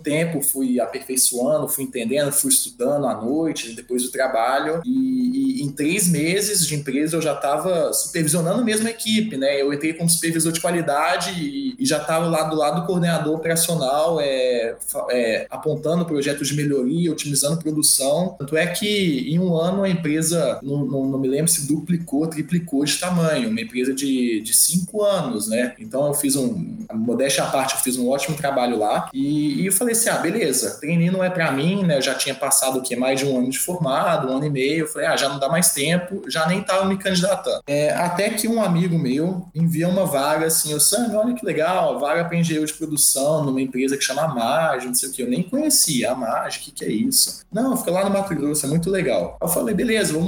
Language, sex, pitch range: Portuguese, male, 140-190 Hz